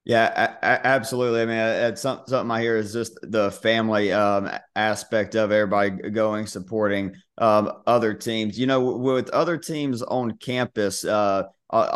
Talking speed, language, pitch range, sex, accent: 145 wpm, English, 105-125 Hz, male, American